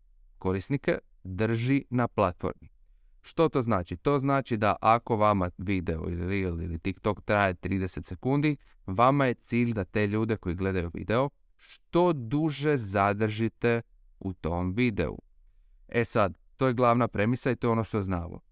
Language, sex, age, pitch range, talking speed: Croatian, male, 30-49, 95-120 Hz, 150 wpm